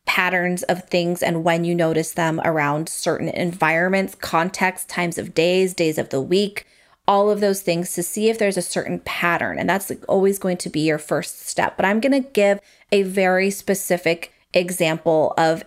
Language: English